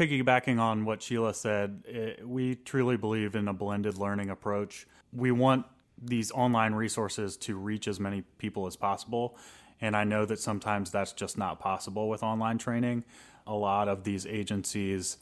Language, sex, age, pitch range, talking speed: English, male, 30-49, 100-115 Hz, 165 wpm